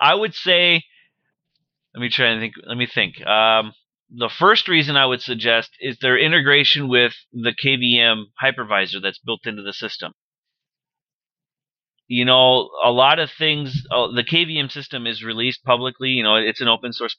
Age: 30-49